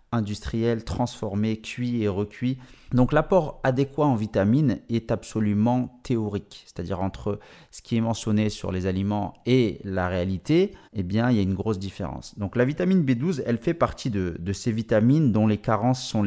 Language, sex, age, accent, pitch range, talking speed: French, male, 30-49, French, 100-125 Hz, 175 wpm